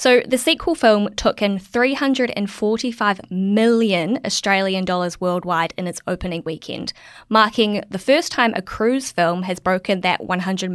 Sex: female